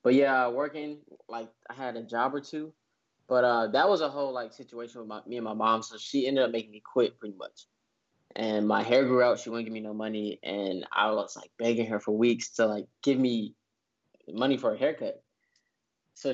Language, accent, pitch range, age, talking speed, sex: English, American, 115-140 Hz, 10-29, 220 wpm, male